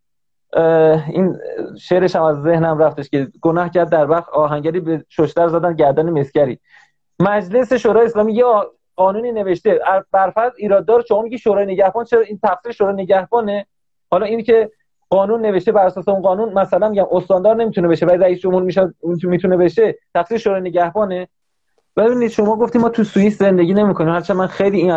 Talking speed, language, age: 170 wpm, Persian, 30-49